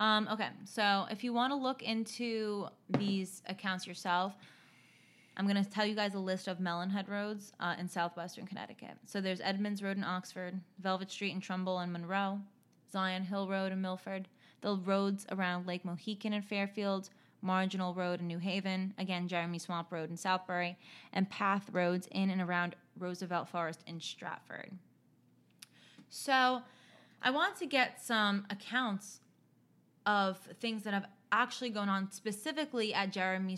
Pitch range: 180-210 Hz